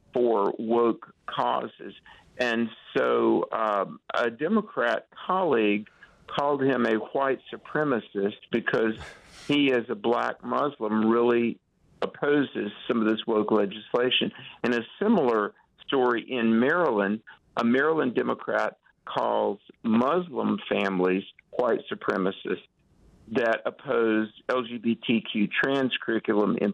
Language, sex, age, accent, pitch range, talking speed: English, male, 50-69, American, 105-130 Hz, 105 wpm